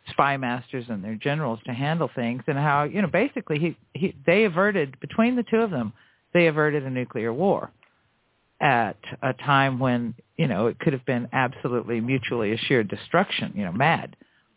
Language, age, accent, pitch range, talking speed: English, 50-69, American, 130-200 Hz, 180 wpm